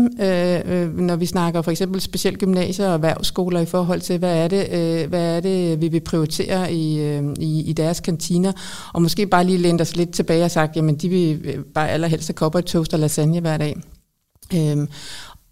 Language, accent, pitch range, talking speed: Danish, native, 155-185 Hz, 200 wpm